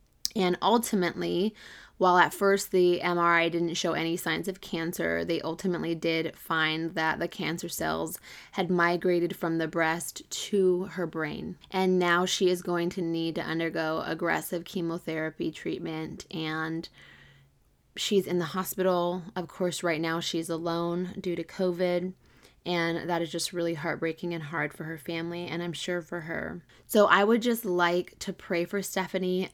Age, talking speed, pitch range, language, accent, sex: 20-39, 165 wpm, 165-185 Hz, English, American, female